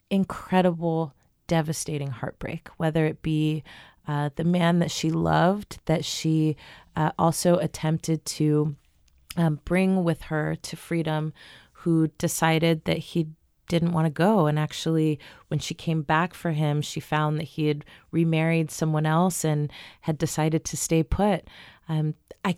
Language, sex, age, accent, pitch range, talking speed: English, female, 30-49, American, 150-170 Hz, 150 wpm